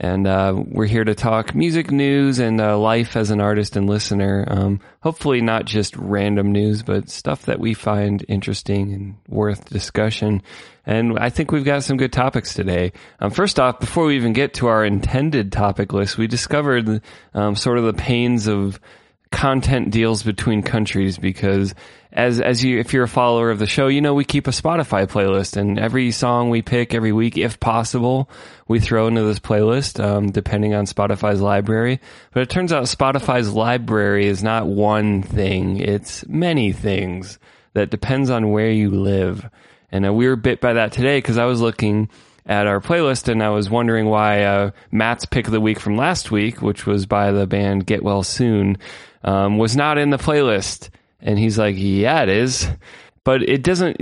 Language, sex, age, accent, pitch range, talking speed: English, male, 20-39, American, 100-125 Hz, 190 wpm